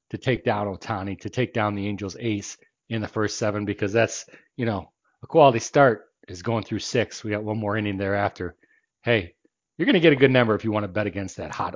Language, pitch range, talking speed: English, 105-130 Hz, 240 wpm